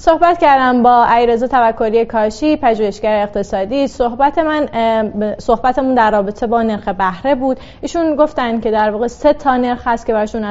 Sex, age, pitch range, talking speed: female, 30-49, 215-265 Hz, 160 wpm